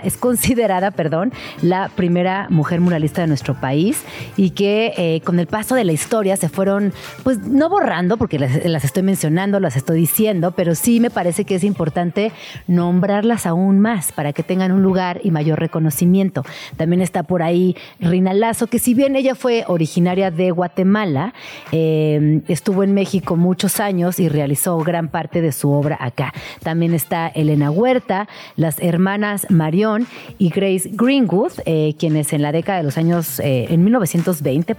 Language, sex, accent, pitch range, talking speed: Spanish, female, Mexican, 155-195 Hz, 170 wpm